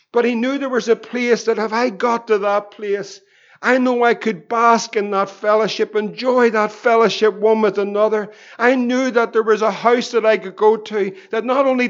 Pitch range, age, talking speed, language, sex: 215-240 Hz, 50-69, 215 wpm, English, male